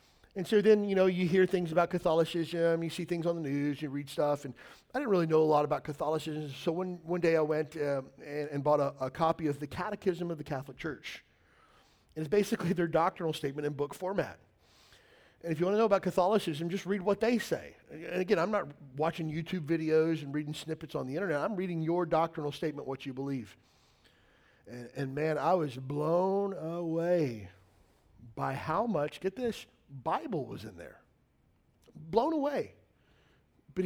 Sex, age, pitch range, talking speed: male, 40-59, 150-180 Hz, 195 wpm